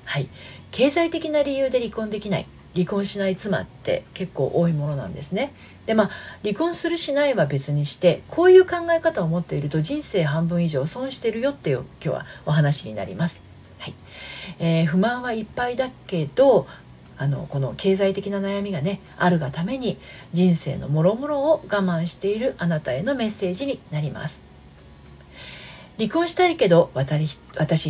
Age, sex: 40-59, female